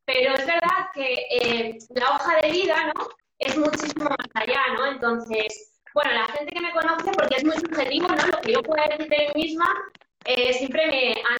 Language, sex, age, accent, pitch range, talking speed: Spanish, female, 20-39, Spanish, 250-300 Hz, 205 wpm